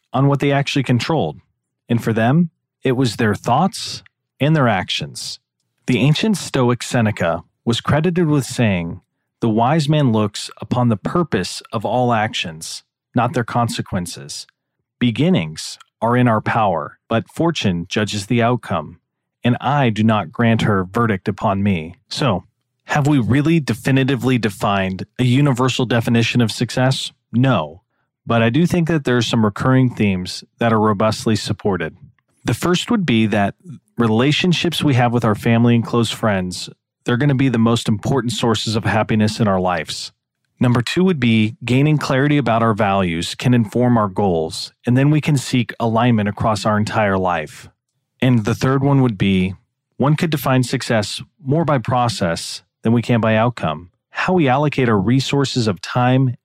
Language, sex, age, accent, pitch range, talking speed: English, male, 40-59, American, 110-135 Hz, 165 wpm